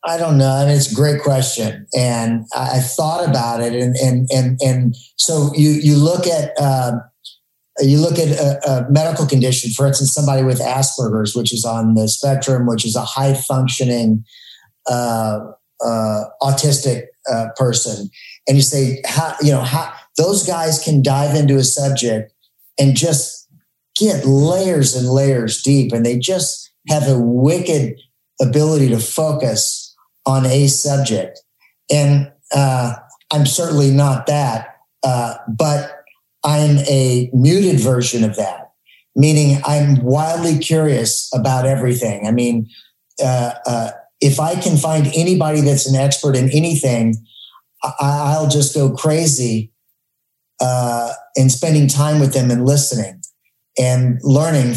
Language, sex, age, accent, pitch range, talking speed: English, male, 40-59, American, 125-145 Hz, 145 wpm